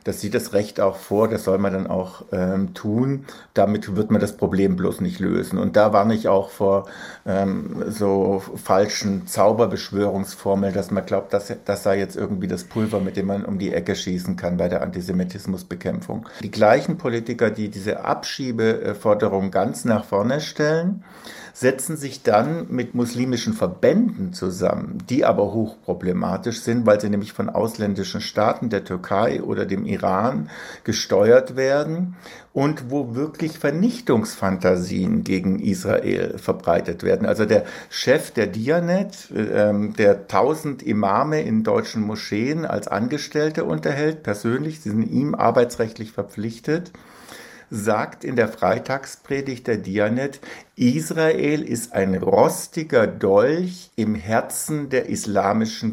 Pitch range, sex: 100-145 Hz, male